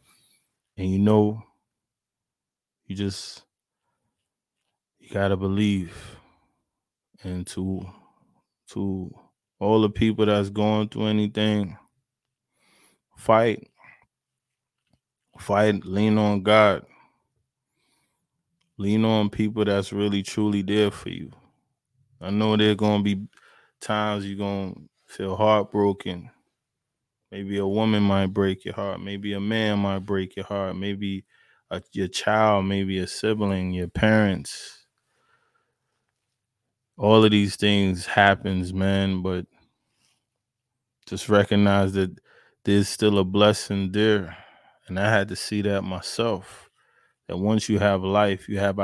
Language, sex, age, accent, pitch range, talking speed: English, male, 20-39, American, 95-110 Hz, 115 wpm